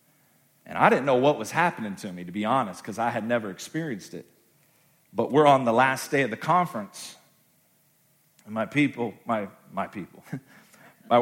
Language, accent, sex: English, American, male